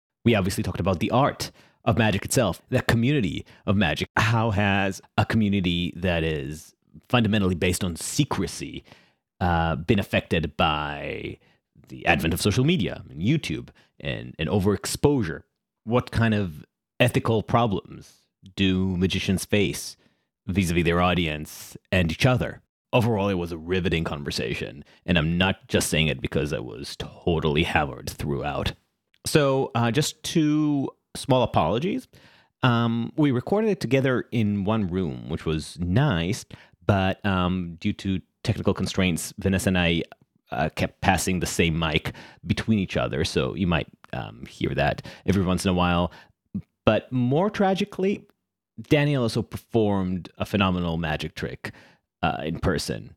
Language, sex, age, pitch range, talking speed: English, male, 30-49, 90-120 Hz, 145 wpm